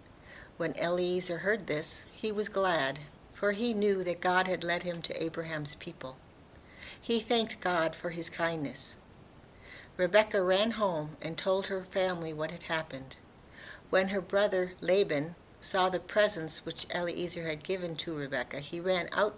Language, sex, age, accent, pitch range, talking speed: English, female, 60-79, American, 160-190 Hz, 155 wpm